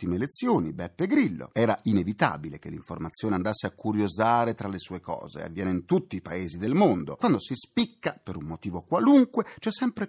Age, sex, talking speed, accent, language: 40-59, male, 180 wpm, native, Italian